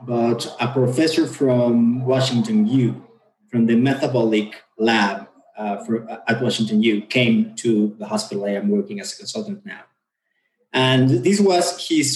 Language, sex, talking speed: English, male, 145 wpm